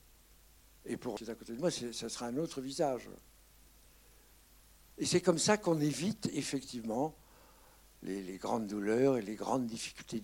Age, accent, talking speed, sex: 60-79, French, 165 wpm, male